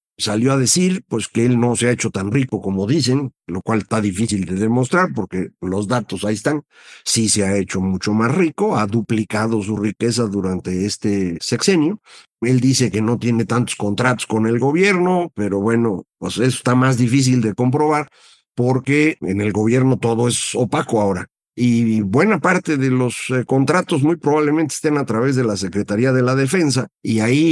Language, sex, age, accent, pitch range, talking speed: Spanish, male, 50-69, Mexican, 110-140 Hz, 190 wpm